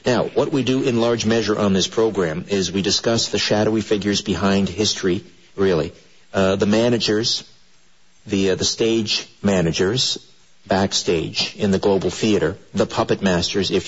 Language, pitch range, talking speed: English, 95-115 Hz, 155 wpm